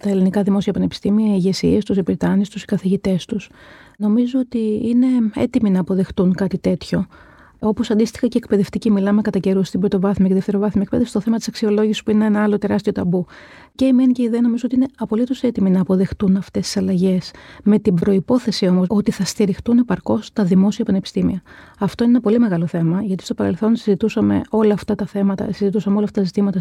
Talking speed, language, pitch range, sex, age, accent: 200 wpm, Greek, 190-220 Hz, female, 30-49, native